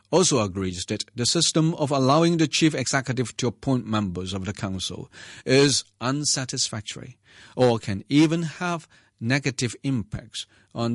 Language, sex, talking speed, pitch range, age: English, male, 135 wpm, 105-140 Hz, 50-69